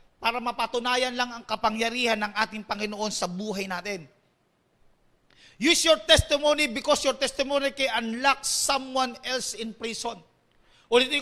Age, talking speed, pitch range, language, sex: 40-59, 130 wpm, 250-285 Hz, English, male